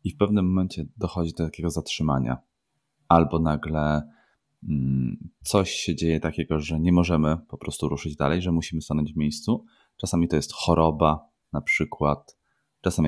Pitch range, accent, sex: 75-85 Hz, native, male